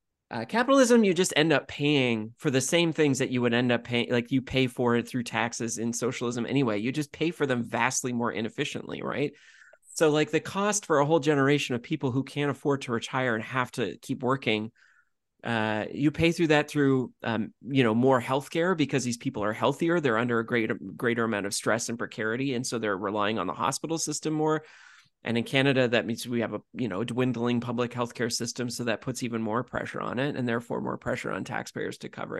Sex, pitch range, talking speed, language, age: male, 115-145 Hz, 230 wpm, English, 30-49